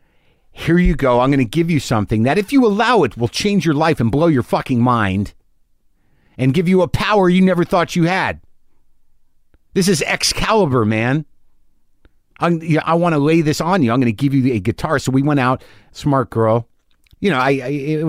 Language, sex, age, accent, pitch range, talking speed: English, male, 50-69, American, 100-135 Hz, 210 wpm